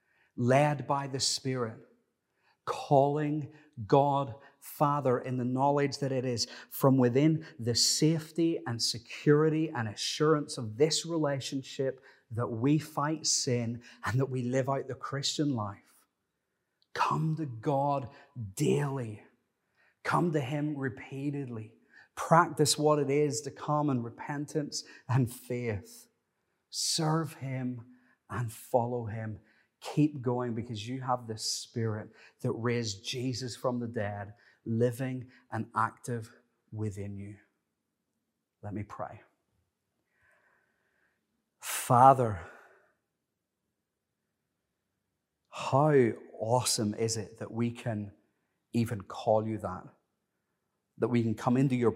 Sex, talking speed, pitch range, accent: male, 115 wpm, 115-140 Hz, British